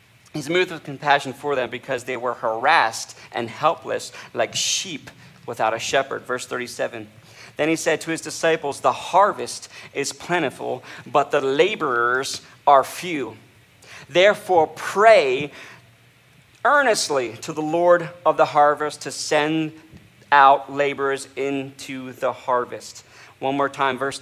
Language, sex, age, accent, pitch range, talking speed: English, male, 40-59, American, 130-160 Hz, 135 wpm